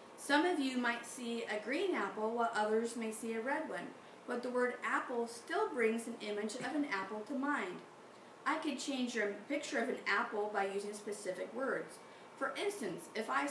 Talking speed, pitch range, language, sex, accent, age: 195 wpm, 210-270 Hz, English, female, American, 40-59